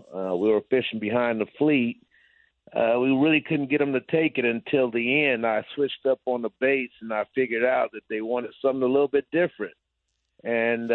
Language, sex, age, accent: English, male, 50-69, American